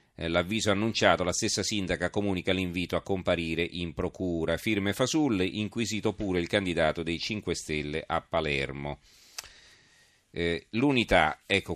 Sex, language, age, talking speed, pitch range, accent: male, Italian, 40-59, 130 wpm, 85-105 Hz, native